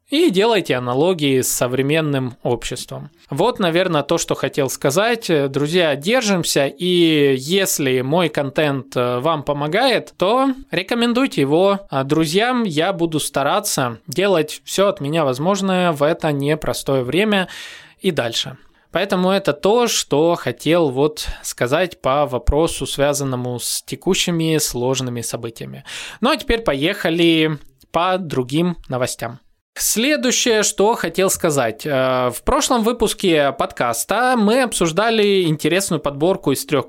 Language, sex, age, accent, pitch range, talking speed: Russian, male, 20-39, native, 135-190 Hz, 115 wpm